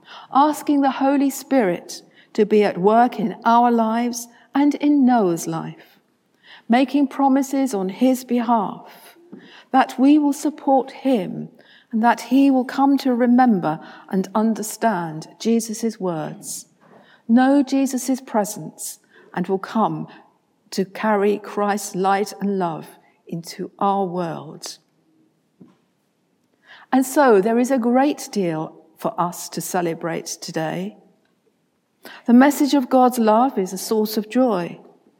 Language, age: English, 60-79